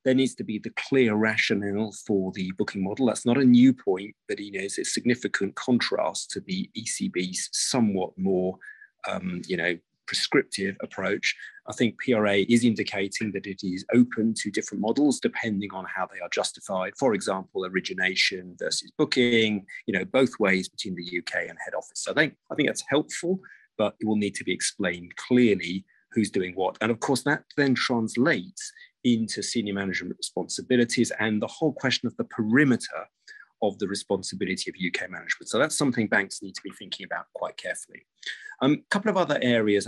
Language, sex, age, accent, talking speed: English, male, 40-59, British, 185 wpm